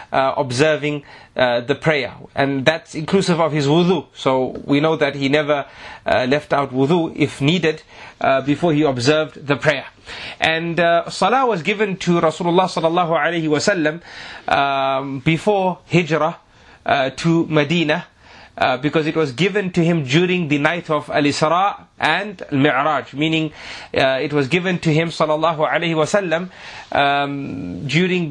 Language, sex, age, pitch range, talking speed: English, male, 30-49, 150-170 Hz, 150 wpm